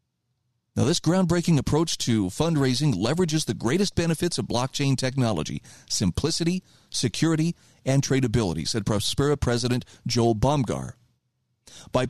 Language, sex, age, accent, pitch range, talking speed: English, male, 40-59, American, 120-160 Hz, 115 wpm